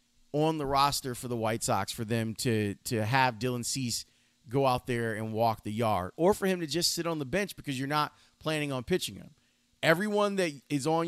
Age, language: 30-49, English